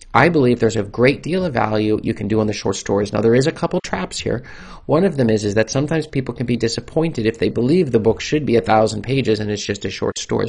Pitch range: 105-130 Hz